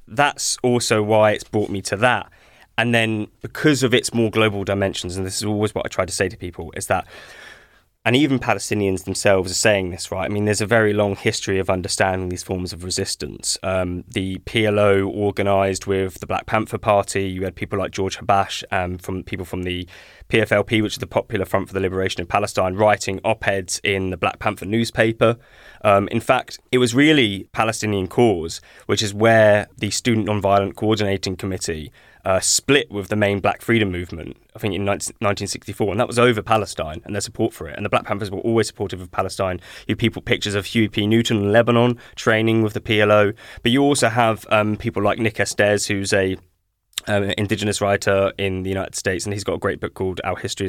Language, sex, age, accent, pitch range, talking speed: English, male, 10-29, British, 95-110 Hz, 205 wpm